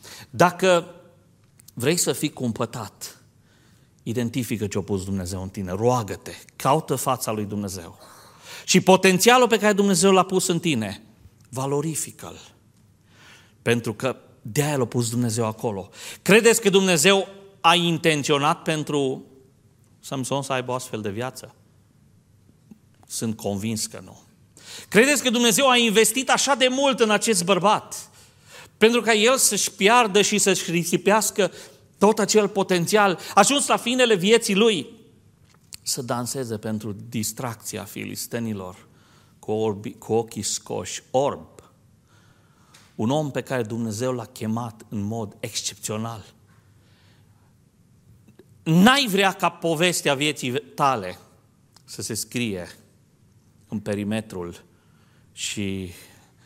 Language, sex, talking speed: Romanian, male, 115 wpm